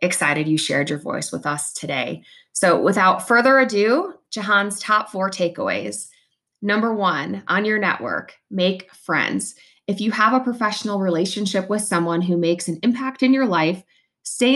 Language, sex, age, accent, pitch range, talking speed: English, female, 20-39, American, 170-215 Hz, 160 wpm